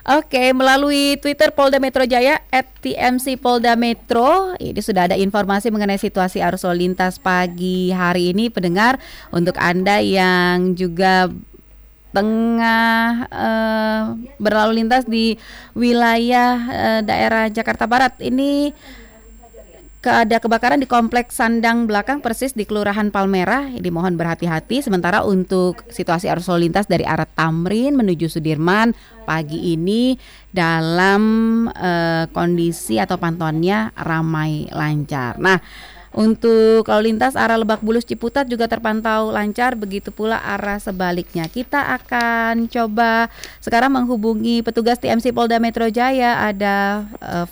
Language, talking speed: Indonesian, 115 wpm